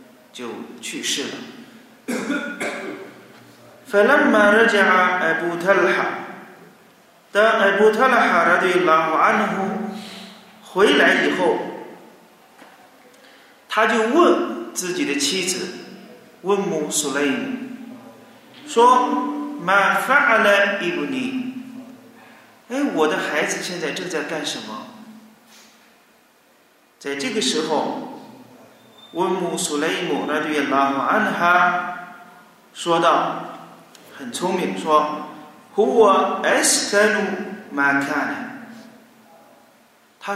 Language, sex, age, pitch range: Chinese, male, 40-59, 185-255 Hz